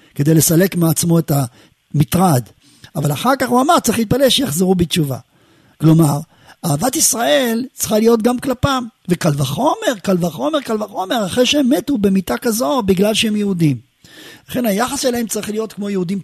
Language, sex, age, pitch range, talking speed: Hebrew, male, 50-69, 150-225 Hz, 155 wpm